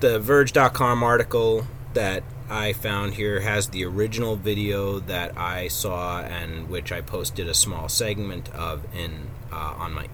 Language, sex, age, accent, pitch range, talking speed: English, male, 30-49, American, 80-115 Hz, 155 wpm